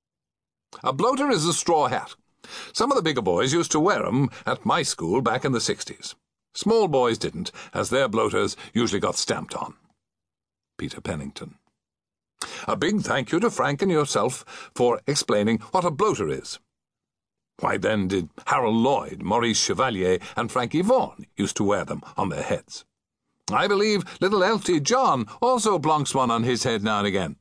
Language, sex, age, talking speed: English, male, 60-79, 175 wpm